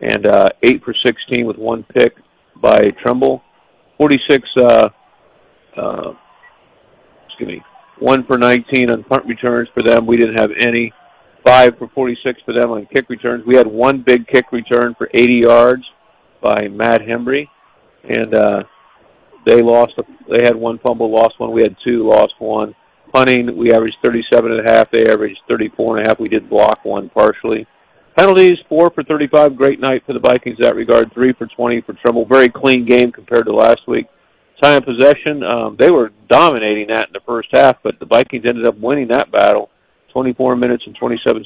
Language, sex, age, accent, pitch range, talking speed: English, male, 50-69, American, 115-125 Hz, 185 wpm